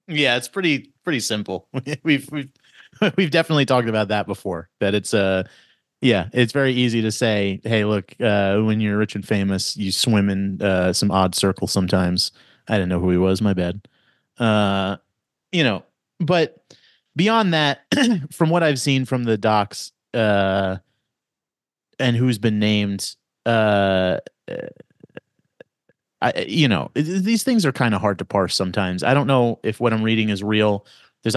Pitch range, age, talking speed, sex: 100-125 Hz, 30-49, 165 wpm, male